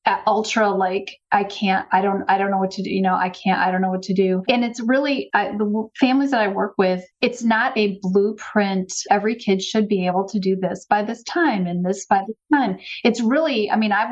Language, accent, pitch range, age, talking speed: English, American, 190-215 Hz, 30-49, 245 wpm